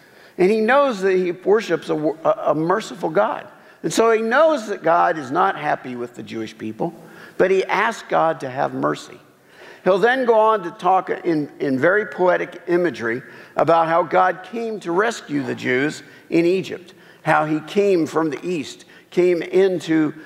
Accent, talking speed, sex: American, 180 wpm, male